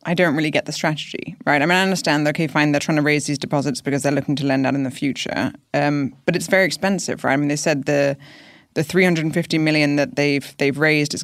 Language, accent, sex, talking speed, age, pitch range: English, British, female, 255 wpm, 20-39, 140-170 Hz